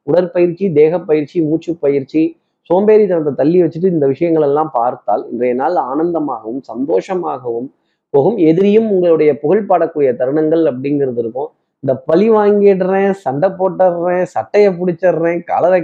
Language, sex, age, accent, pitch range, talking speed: Tamil, male, 30-49, native, 140-180 Hz, 120 wpm